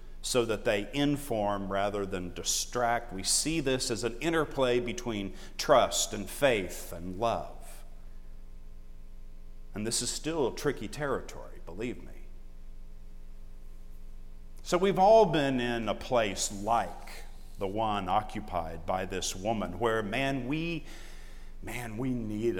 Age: 50-69